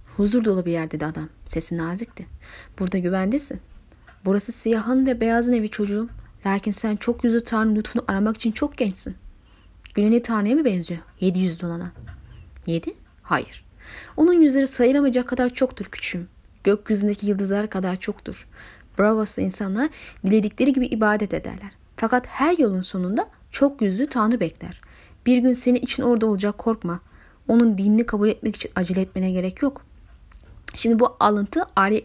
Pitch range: 195-265 Hz